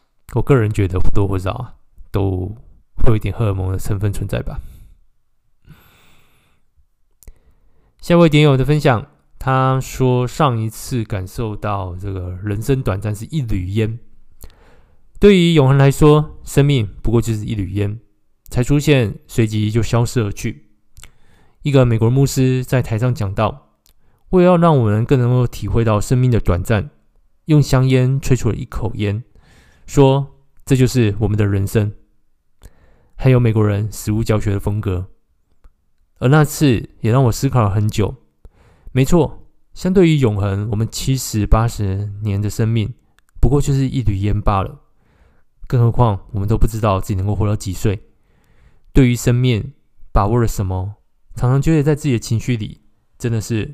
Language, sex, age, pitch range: Chinese, male, 20-39, 100-130 Hz